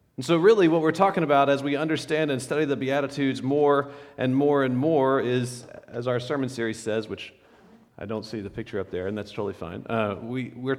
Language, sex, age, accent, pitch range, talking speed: English, male, 40-59, American, 130-170 Hz, 215 wpm